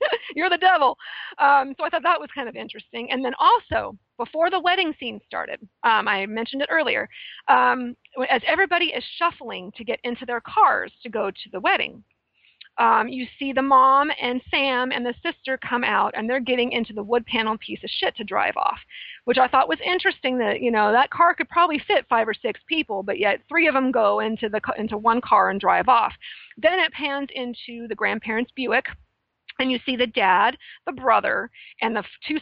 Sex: female